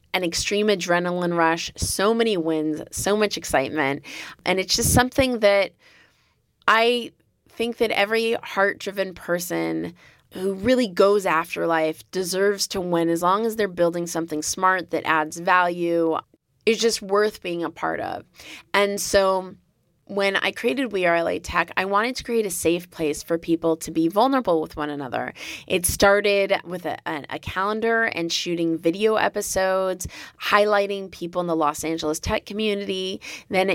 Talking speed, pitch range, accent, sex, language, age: 160 wpm, 165-200 Hz, American, female, English, 20-39